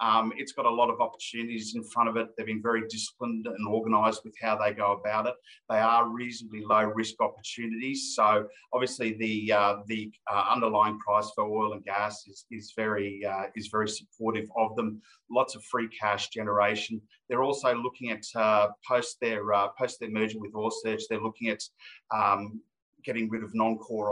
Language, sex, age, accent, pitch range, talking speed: English, male, 30-49, Australian, 110-125 Hz, 190 wpm